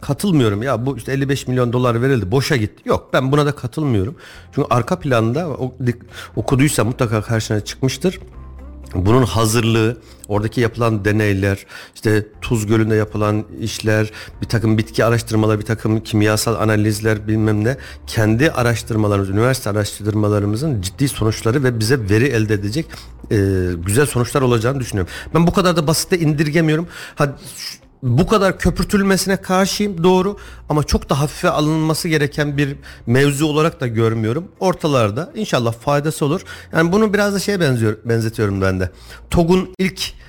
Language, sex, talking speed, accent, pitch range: Turkish, male, 145 wpm, native, 110-145 Hz